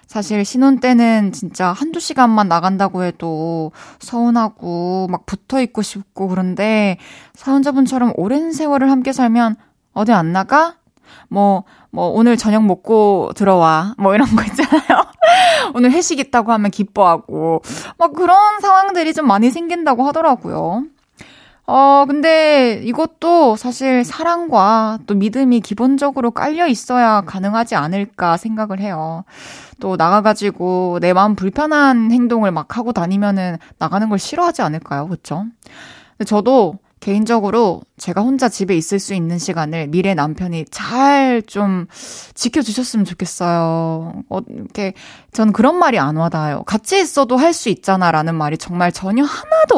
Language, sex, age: Korean, female, 20-39